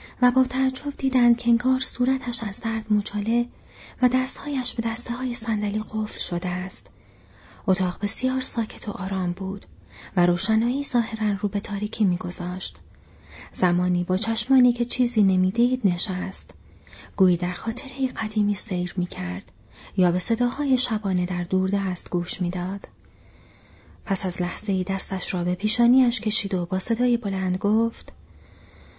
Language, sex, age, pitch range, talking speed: Persian, female, 30-49, 180-240 Hz, 135 wpm